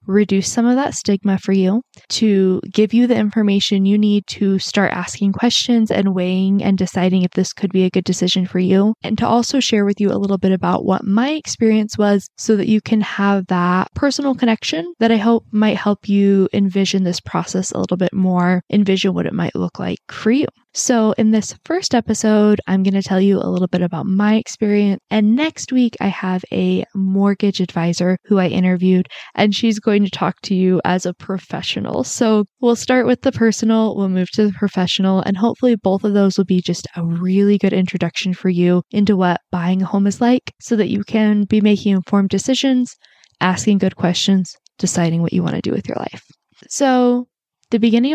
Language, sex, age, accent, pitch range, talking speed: English, female, 10-29, American, 185-220 Hz, 205 wpm